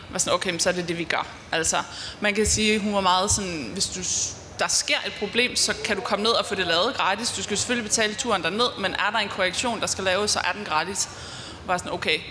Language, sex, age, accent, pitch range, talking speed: Danish, female, 20-39, native, 175-215 Hz, 240 wpm